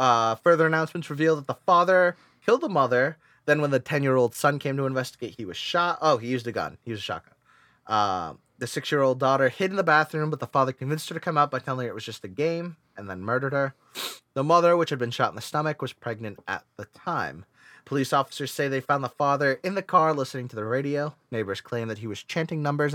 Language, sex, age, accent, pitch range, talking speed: English, male, 30-49, American, 120-150 Hz, 255 wpm